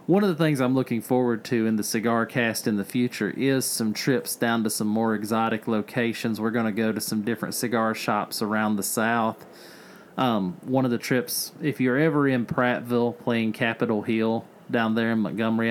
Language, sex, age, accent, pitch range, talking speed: English, male, 30-49, American, 115-145 Hz, 205 wpm